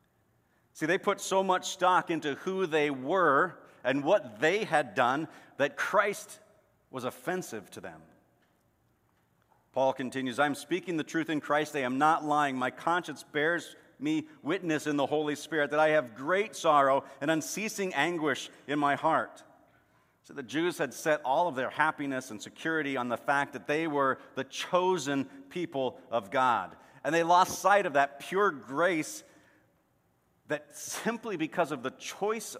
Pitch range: 130-175 Hz